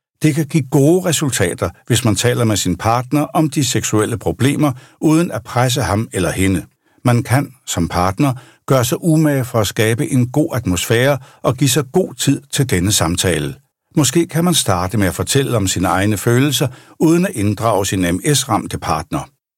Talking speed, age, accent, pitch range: 180 wpm, 60-79, native, 100-140 Hz